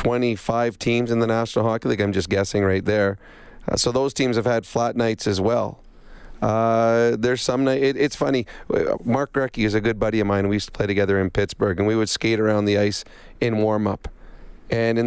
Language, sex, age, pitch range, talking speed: English, male, 30-49, 105-125 Hz, 225 wpm